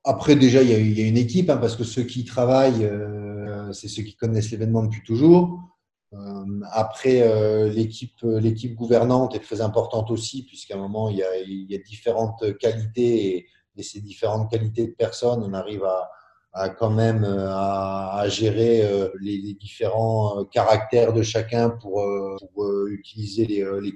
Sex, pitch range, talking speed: male, 105-125 Hz, 170 wpm